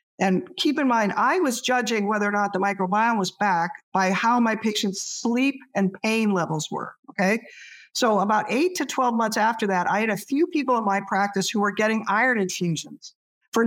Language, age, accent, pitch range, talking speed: English, 50-69, American, 200-265 Hz, 200 wpm